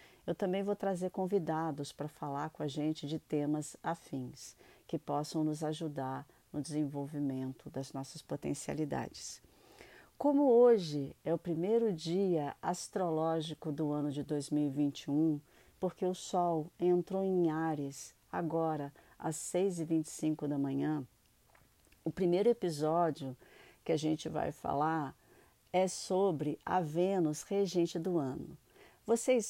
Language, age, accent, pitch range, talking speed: Portuguese, 50-69, Brazilian, 150-185 Hz, 120 wpm